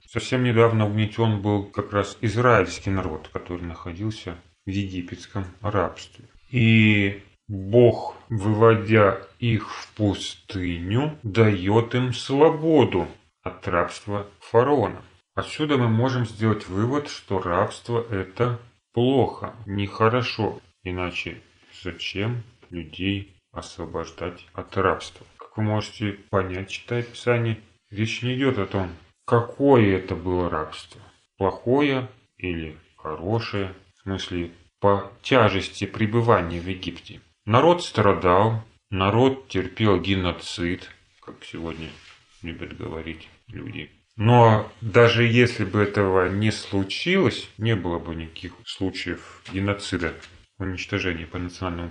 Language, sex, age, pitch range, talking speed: Russian, male, 30-49, 90-115 Hz, 110 wpm